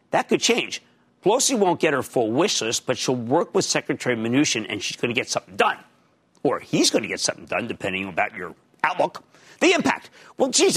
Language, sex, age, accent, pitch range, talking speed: English, male, 50-69, American, 145-225 Hz, 215 wpm